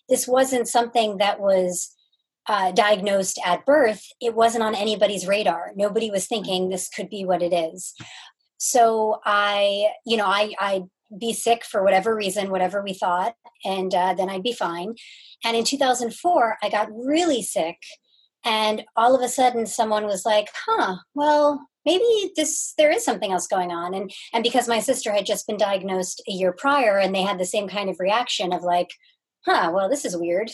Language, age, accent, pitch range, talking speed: English, 30-49, American, 190-235 Hz, 195 wpm